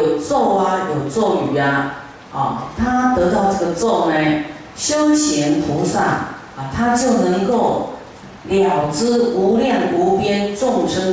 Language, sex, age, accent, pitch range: Chinese, female, 50-69, native, 155-210 Hz